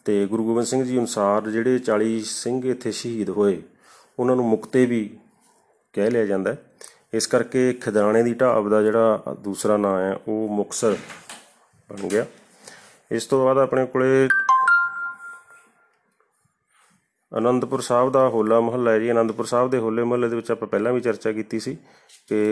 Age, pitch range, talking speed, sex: 30-49, 110-125 Hz, 160 wpm, male